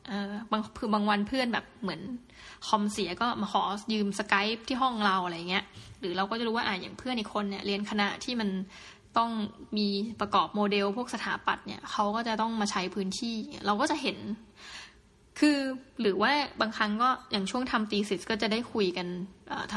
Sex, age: female, 20-39